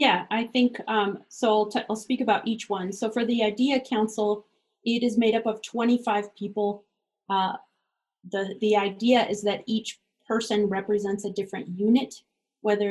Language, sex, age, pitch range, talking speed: English, female, 30-49, 195-225 Hz, 165 wpm